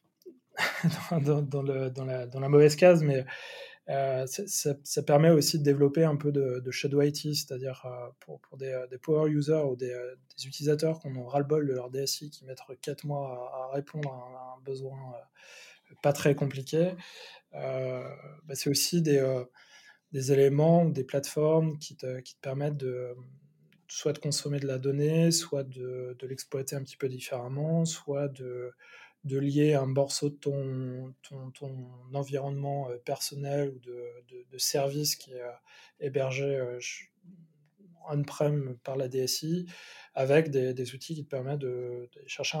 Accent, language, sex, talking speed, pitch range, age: French, French, male, 175 wpm, 130-150 Hz, 20-39